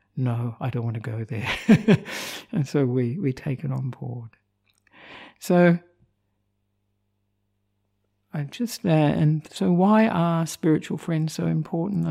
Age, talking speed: 60-79, 135 wpm